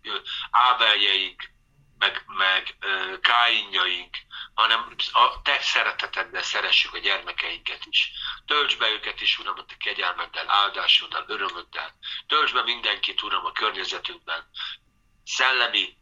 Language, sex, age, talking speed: Hungarian, male, 50-69, 105 wpm